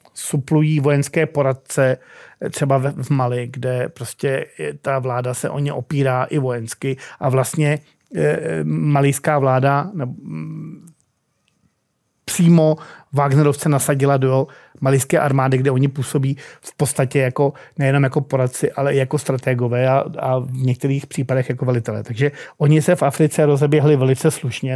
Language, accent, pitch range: Czech, native, 135-155 Hz